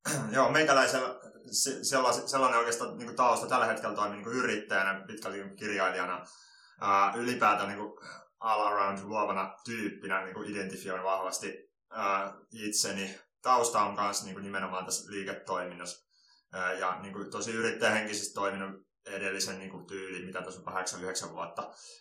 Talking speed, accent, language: 105 wpm, native, Finnish